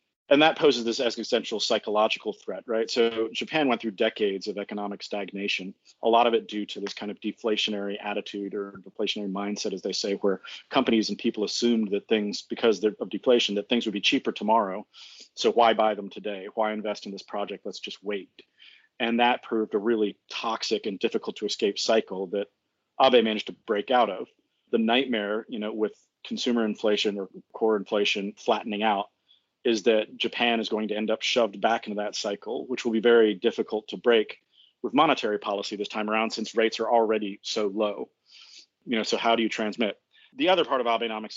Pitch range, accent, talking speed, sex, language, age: 105-110 Hz, American, 195 wpm, male, English, 40-59